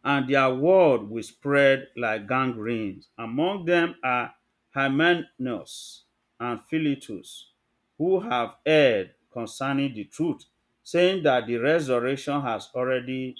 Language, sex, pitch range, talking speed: English, male, 110-155 Hz, 110 wpm